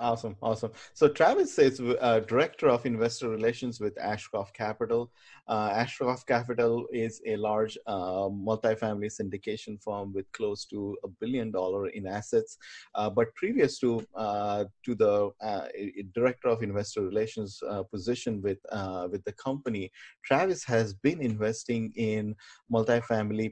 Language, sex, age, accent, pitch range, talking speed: English, male, 30-49, Indian, 100-125 Hz, 145 wpm